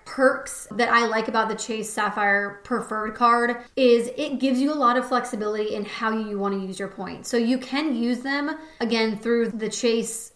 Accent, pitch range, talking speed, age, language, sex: American, 215-255 Hz, 205 wpm, 20-39, English, female